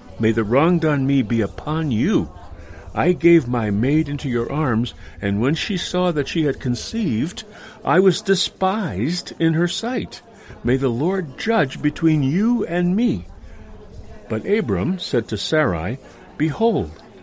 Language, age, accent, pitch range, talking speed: English, 60-79, American, 105-175 Hz, 150 wpm